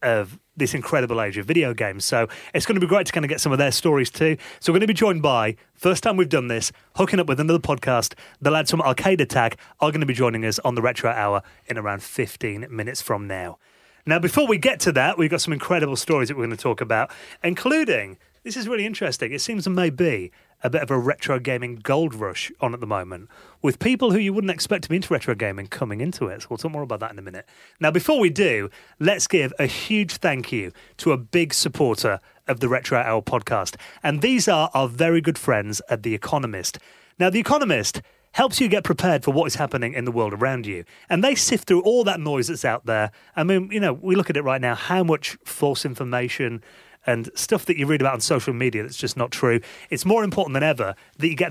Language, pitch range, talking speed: English, 125-180 Hz, 245 wpm